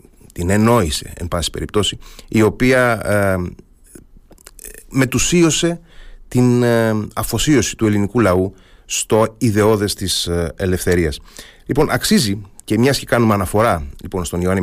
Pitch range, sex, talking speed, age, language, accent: 90-115 Hz, male, 115 wpm, 30-49, Greek, native